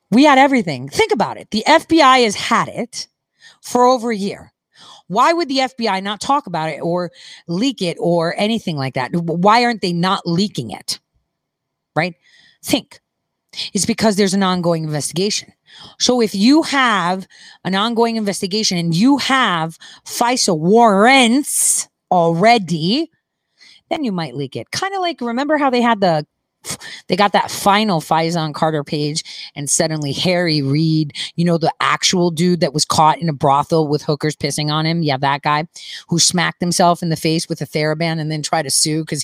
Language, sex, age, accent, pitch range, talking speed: English, female, 30-49, American, 155-215 Hz, 175 wpm